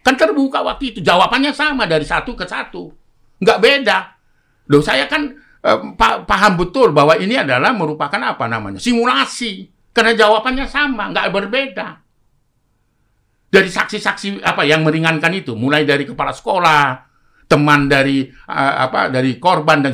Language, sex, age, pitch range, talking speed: Indonesian, male, 50-69, 145-220 Hz, 140 wpm